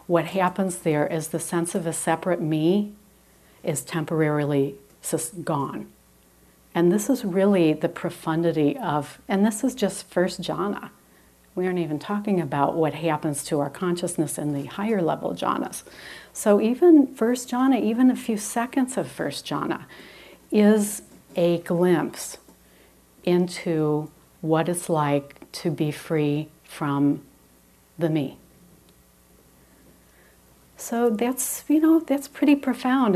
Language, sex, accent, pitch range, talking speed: English, female, American, 155-205 Hz, 130 wpm